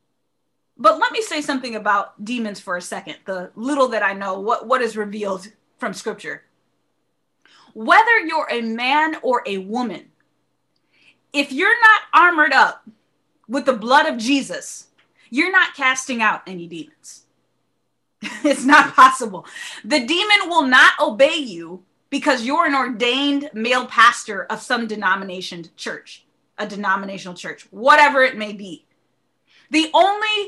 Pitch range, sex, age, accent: 220-295 Hz, female, 20-39, American